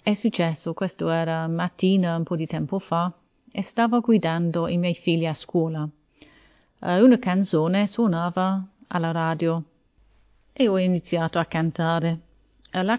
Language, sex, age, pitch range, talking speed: Italian, female, 30-49, 165-195 Hz, 135 wpm